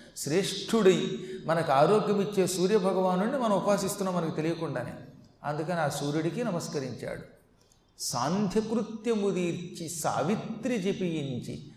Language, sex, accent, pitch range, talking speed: Telugu, male, native, 150-190 Hz, 80 wpm